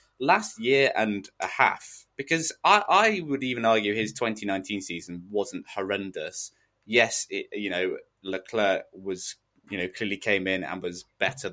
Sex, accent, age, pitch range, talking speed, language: male, British, 20-39, 95-135 Hz, 160 wpm, English